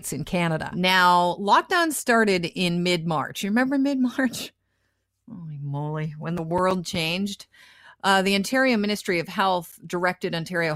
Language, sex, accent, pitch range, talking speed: English, female, American, 150-205 Hz, 135 wpm